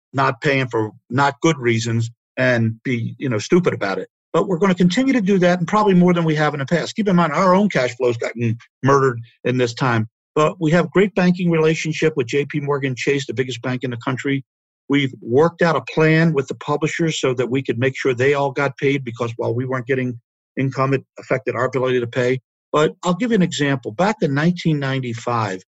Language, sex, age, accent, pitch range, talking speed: English, male, 50-69, American, 120-160 Hz, 235 wpm